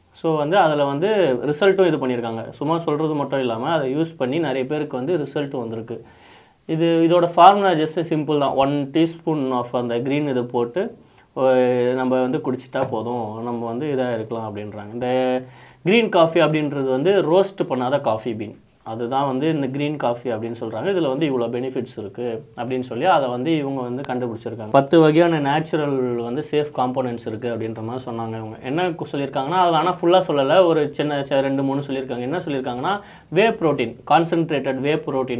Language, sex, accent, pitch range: Tamil, male, native, 125-160 Hz